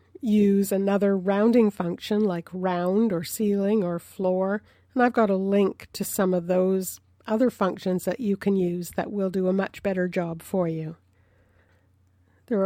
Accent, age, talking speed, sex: American, 50-69, 165 wpm, female